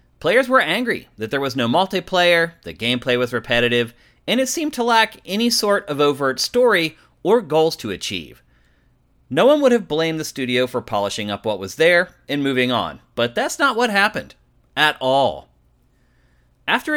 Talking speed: 175 wpm